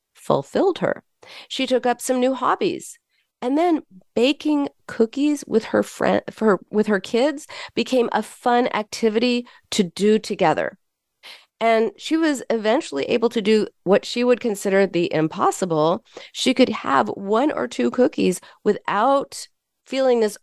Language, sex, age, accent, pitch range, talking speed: English, female, 40-59, American, 180-250 Hz, 145 wpm